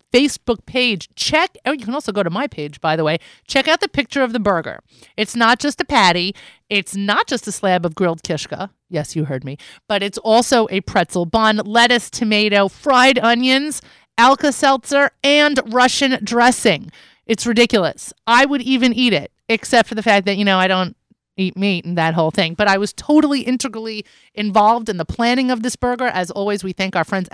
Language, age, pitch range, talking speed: English, 30-49, 185-250 Hz, 200 wpm